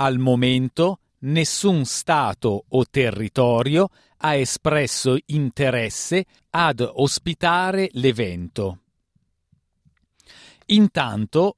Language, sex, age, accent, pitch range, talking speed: Italian, male, 40-59, native, 115-155 Hz, 65 wpm